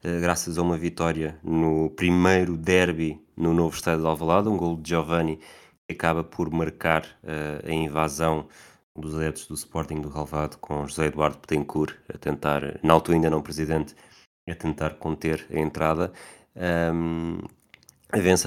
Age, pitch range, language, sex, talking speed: 20-39, 80-85 Hz, Portuguese, male, 155 wpm